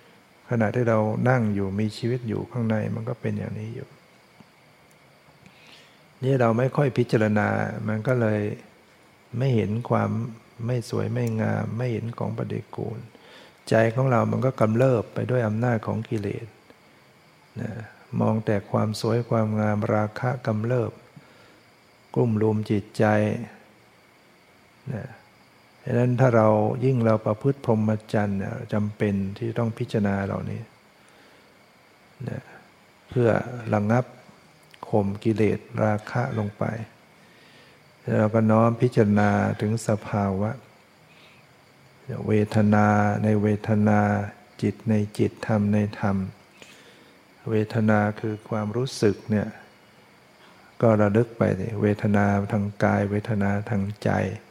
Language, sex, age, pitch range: English, male, 60-79, 105-120 Hz